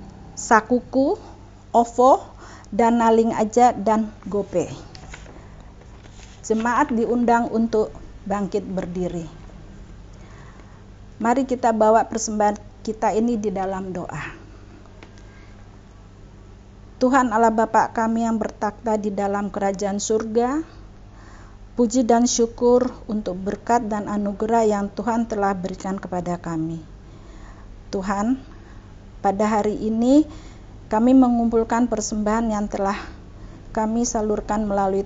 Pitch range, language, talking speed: 160-225 Hz, Indonesian, 95 wpm